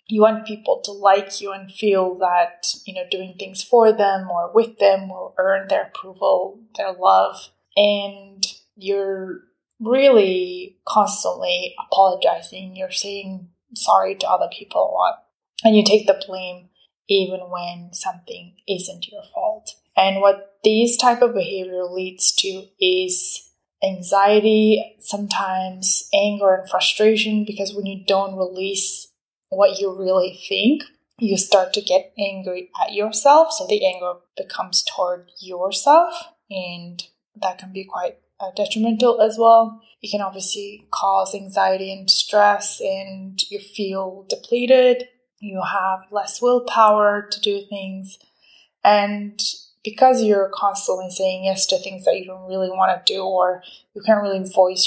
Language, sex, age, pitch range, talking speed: English, female, 20-39, 190-215 Hz, 145 wpm